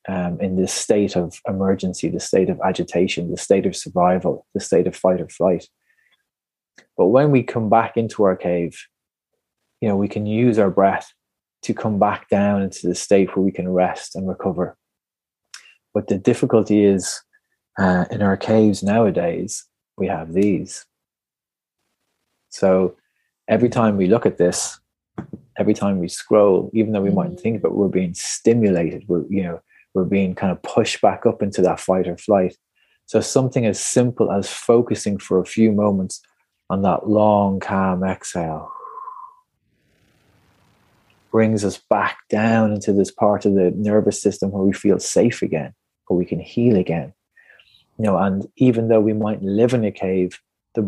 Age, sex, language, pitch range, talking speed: 20-39, male, English, 95-110 Hz, 170 wpm